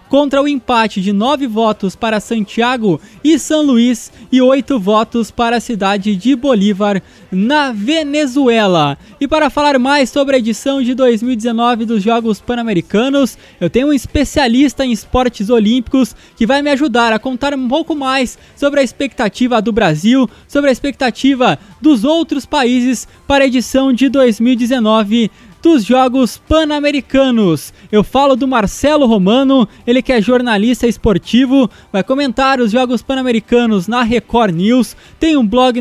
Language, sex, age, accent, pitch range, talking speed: Portuguese, male, 20-39, Brazilian, 230-275 Hz, 150 wpm